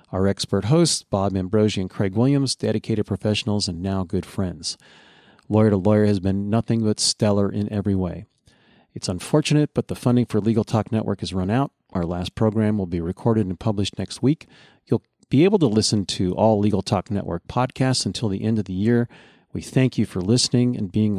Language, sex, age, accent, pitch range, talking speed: English, male, 40-59, American, 95-115 Hz, 200 wpm